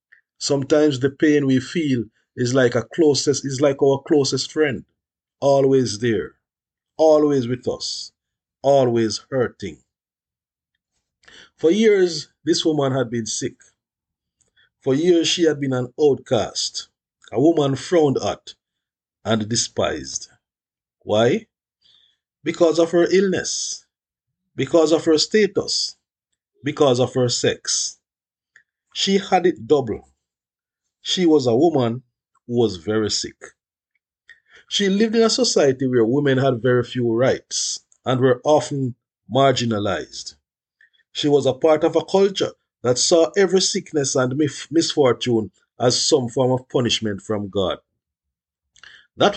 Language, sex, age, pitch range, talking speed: English, male, 50-69, 125-165 Hz, 120 wpm